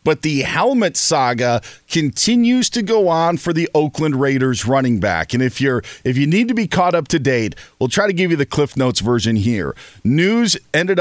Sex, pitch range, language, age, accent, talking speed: male, 115-155 Hz, English, 40-59, American, 205 wpm